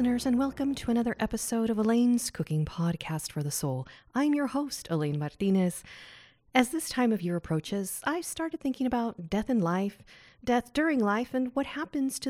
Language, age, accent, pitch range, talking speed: English, 40-59, American, 180-255 Hz, 185 wpm